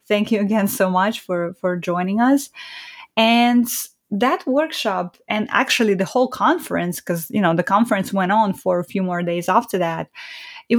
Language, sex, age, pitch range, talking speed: English, female, 20-39, 195-265 Hz, 180 wpm